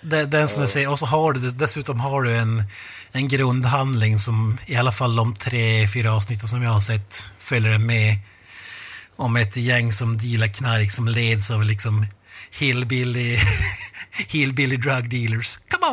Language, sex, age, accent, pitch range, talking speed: Swedish, male, 30-49, native, 105-125 Hz, 165 wpm